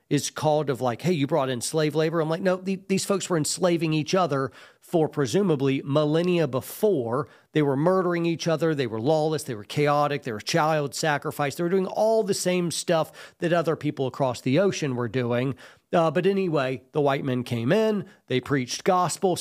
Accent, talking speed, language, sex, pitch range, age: American, 200 wpm, English, male, 130-175 Hz, 40-59